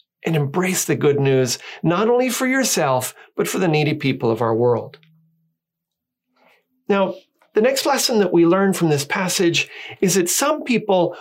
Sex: male